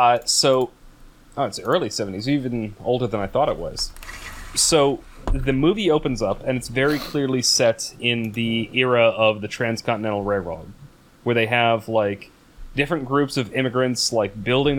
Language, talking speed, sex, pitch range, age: English, 160 wpm, male, 110-130 Hz, 30-49